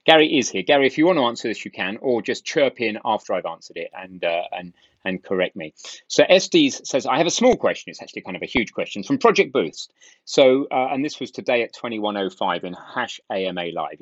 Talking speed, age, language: 245 wpm, 30-49, English